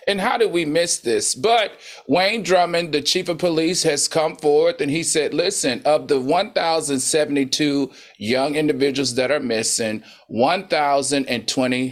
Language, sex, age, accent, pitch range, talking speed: English, male, 40-59, American, 125-160 Hz, 145 wpm